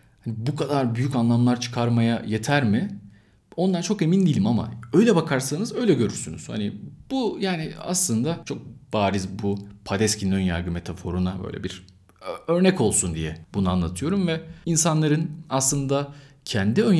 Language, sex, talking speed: Turkish, male, 140 wpm